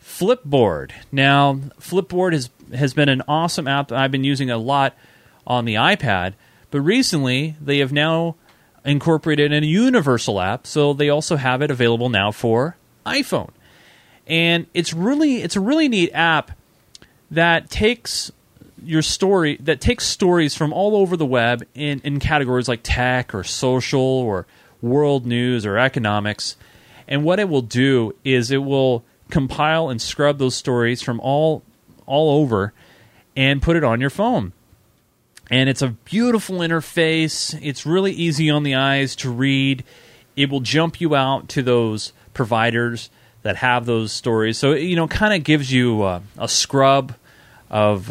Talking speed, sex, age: 160 wpm, male, 30-49